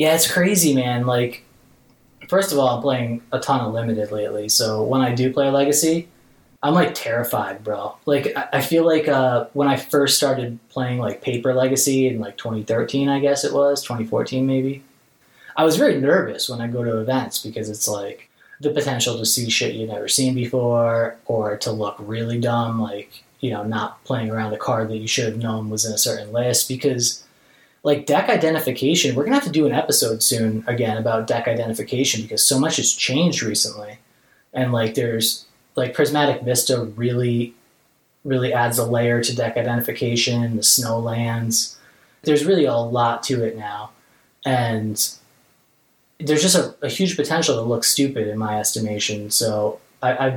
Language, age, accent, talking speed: English, 20-39, American, 180 wpm